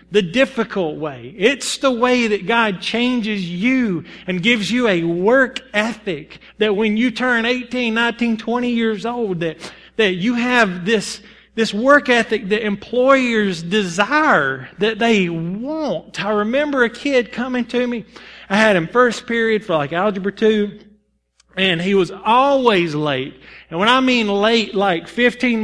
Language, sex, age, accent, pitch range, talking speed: English, male, 40-59, American, 190-250 Hz, 155 wpm